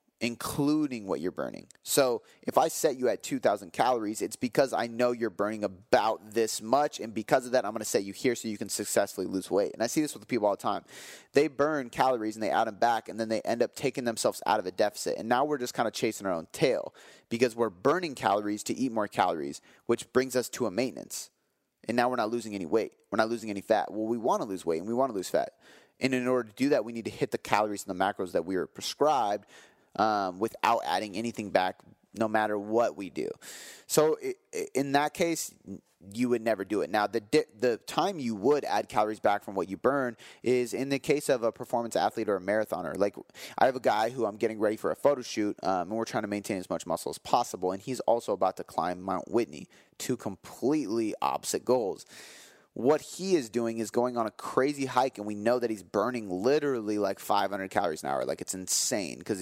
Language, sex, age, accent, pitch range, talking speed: English, male, 30-49, American, 105-130 Hz, 240 wpm